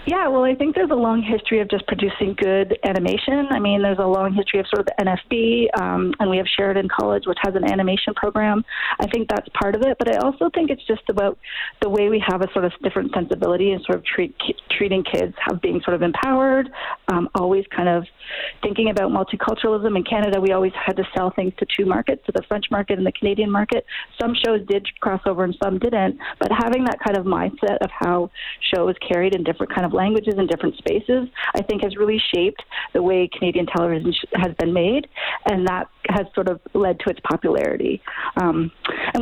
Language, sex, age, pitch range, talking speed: English, female, 30-49, 185-220 Hz, 220 wpm